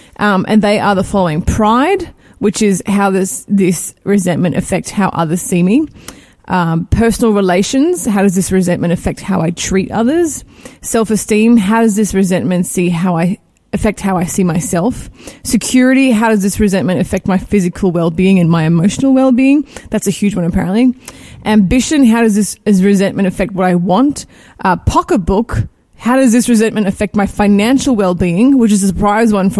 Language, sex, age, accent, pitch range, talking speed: English, female, 20-39, Australian, 185-225 Hz, 180 wpm